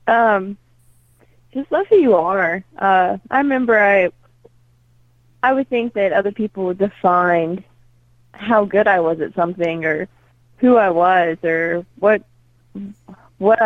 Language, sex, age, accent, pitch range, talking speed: English, female, 20-39, American, 170-205 Hz, 135 wpm